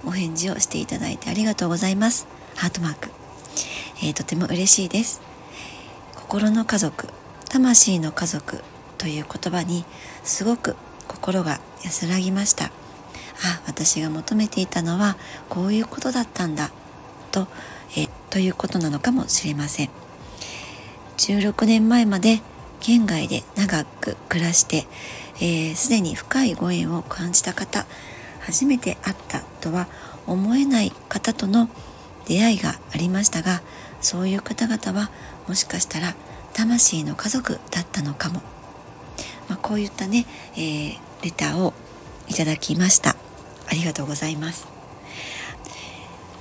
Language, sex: Japanese, male